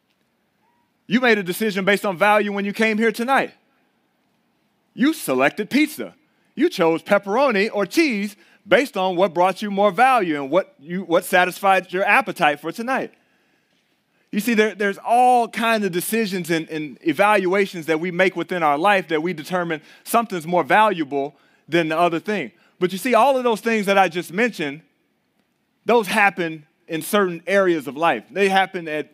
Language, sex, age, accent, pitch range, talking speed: English, male, 30-49, American, 175-225 Hz, 175 wpm